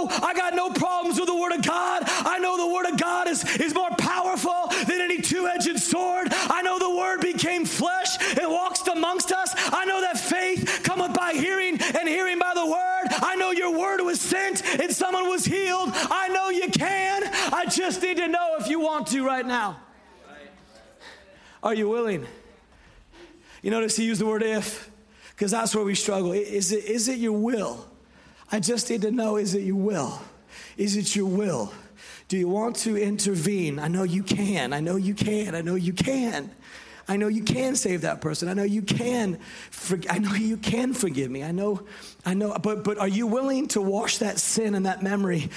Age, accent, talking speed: 30-49, American, 205 wpm